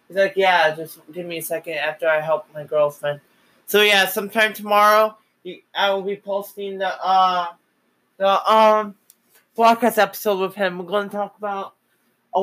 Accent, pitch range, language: American, 180-210 Hz, English